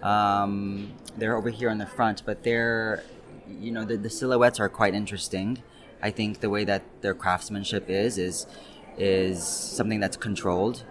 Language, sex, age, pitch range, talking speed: French, male, 20-39, 100-115 Hz, 165 wpm